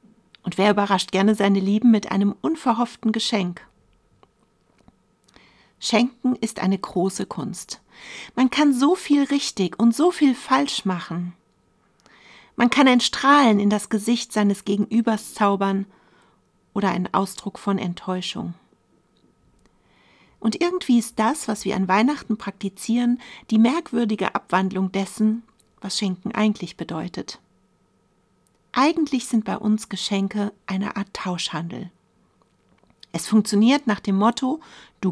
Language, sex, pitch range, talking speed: German, female, 195-240 Hz, 120 wpm